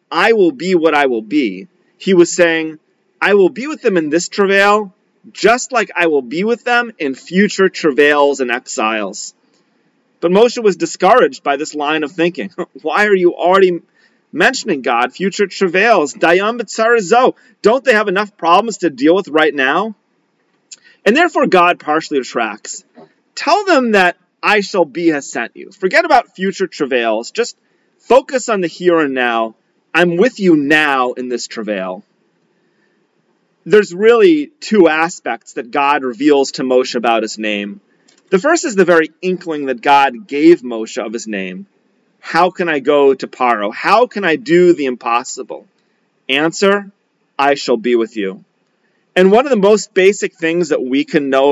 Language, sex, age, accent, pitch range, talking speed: English, male, 30-49, American, 145-205 Hz, 165 wpm